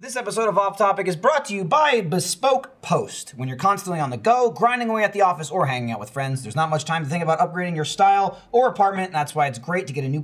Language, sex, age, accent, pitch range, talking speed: English, male, 30-49, American, 170-220 Hz, 285 wpm